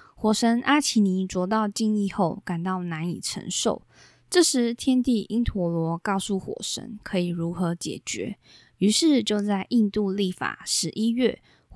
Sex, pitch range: female, 180-220 Hz